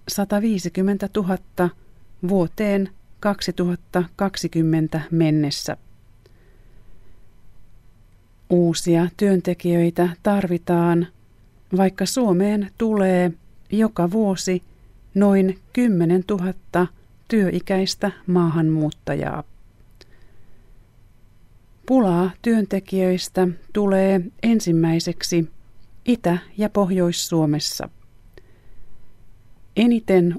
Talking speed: 50 wpm